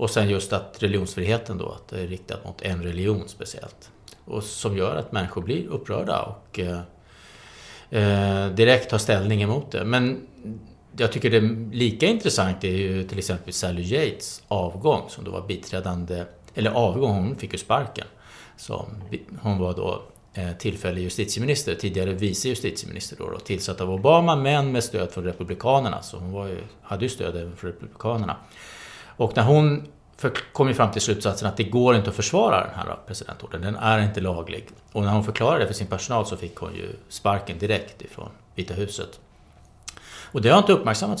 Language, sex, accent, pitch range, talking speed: Swedish, male, Norwegian, 95-115 Hz, 180 wpm